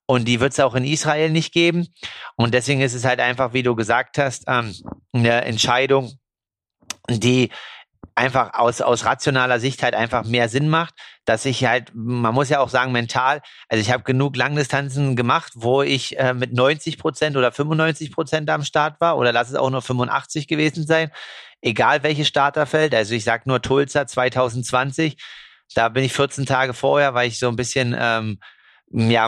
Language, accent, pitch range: German, German, 120-140 Hz